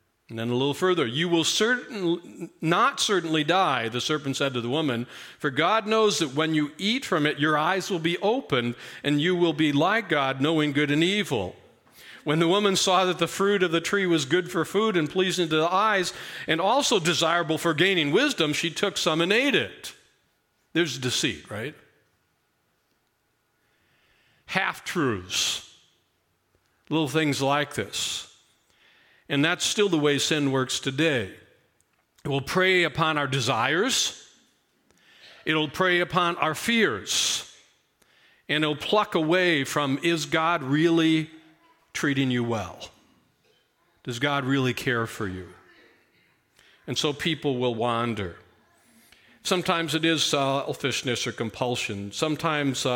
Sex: male